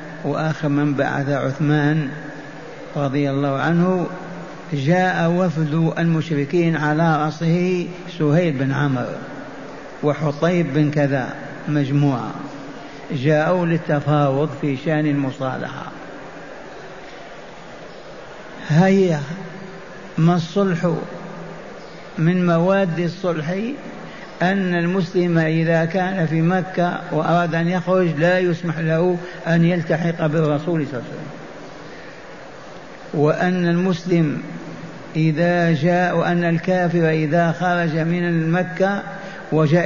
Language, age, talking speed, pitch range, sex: Arabic, 60-79, 90 wpm, 150-180 Hz, male